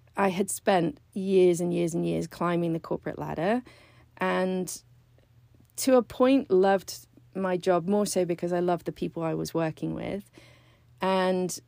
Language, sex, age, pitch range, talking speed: English, female, 40-59, 150-185 Hz, 160 wpm